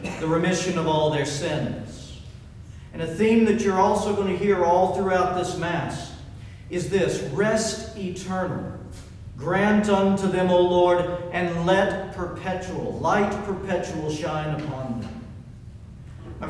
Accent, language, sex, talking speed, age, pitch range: American, English, male, 135 wpm, 50-69, 145-190 Hz